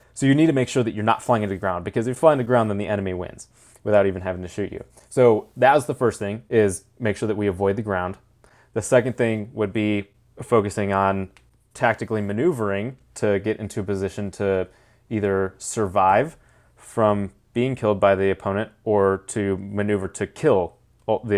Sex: male